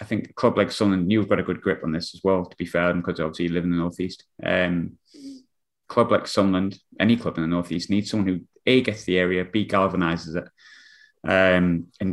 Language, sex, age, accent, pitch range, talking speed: English, male, 20-39, British, 90-105 Hz, 230 wpm